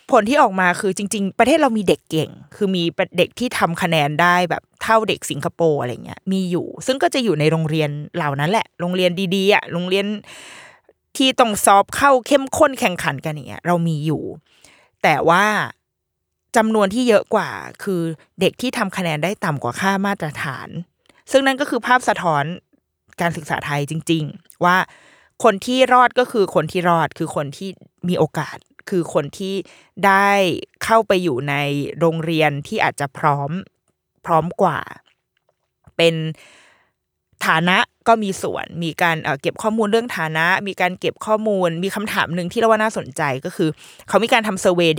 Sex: female